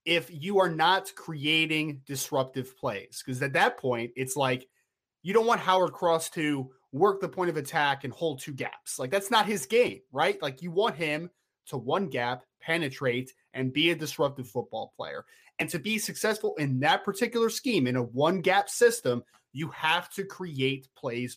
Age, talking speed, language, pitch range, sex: 20-39, 185 wpm, English, 135-190 Hz, male